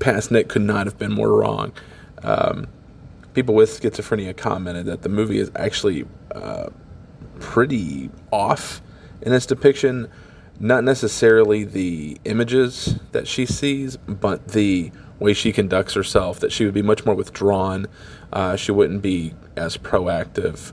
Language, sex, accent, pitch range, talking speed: English, male, American, 100-120 Hz, 145 wpm